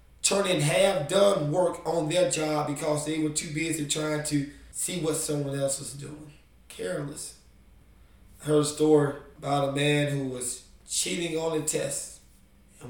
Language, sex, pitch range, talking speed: English, male, 140-185 Hz, 160 wpm